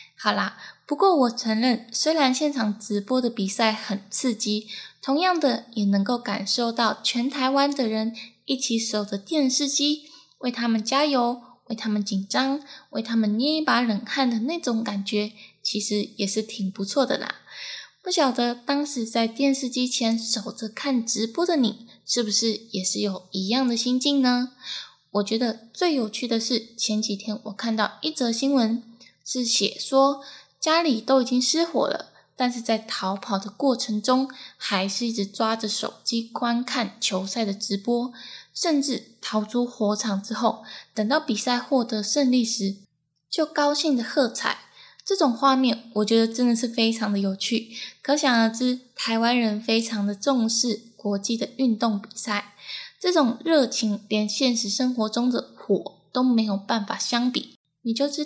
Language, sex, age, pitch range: Chinese, female, 10-29, 215-260 Hz